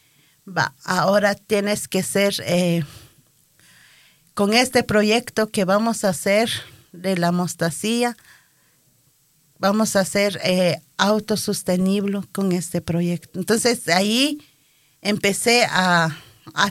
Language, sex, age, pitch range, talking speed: Danish, female, 40-59, 160-215 Hz, 100 wpm